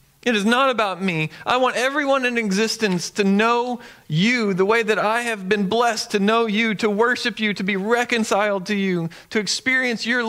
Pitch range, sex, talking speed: 150-230 Hz, male, 200 wpm